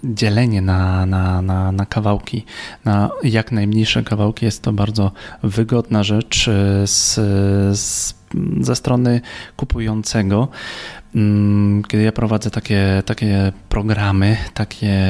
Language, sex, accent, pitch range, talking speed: Polish, male, native, 100-120 Hz, 90 wpm